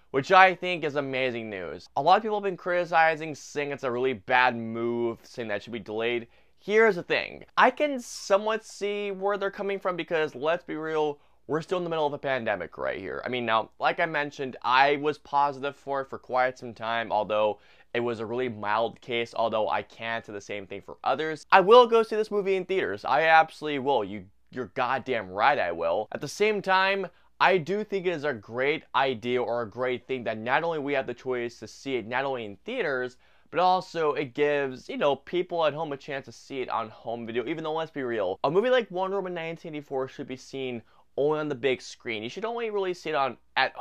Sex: male